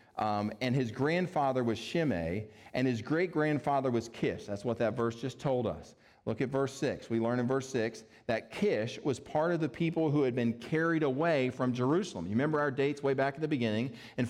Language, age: English, 40-59